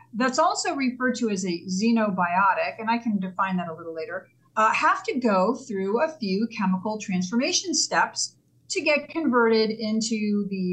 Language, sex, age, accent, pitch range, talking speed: English, female, 40-59, American, 195-250 Hz, 170 wpm